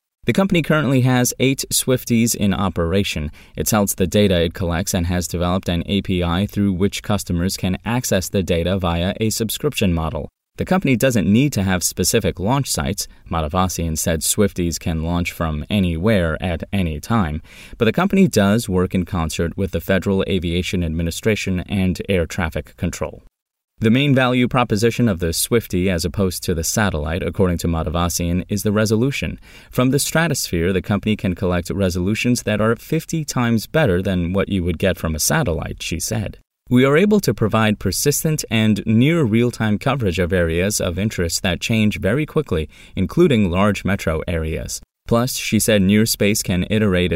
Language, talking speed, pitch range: English, 170 wpm, 85-115 Hz